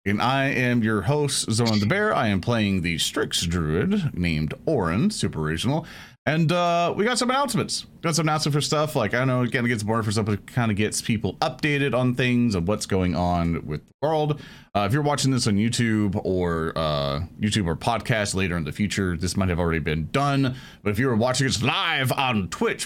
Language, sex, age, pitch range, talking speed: English, male, 30-49, 90-130 Hz, 225 wpm